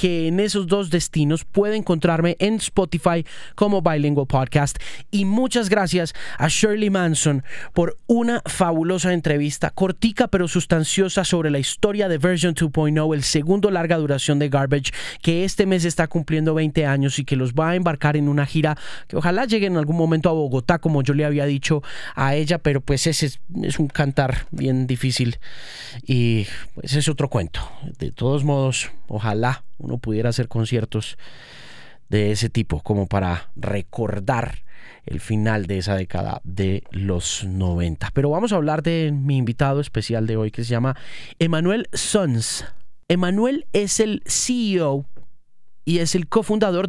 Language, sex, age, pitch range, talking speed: Spanish, male, 30-49, 130-180 Hz, 160 wpm